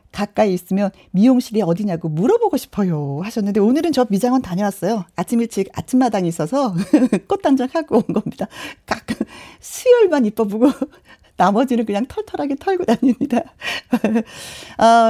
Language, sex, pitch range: Korean, female, 185-260 Hz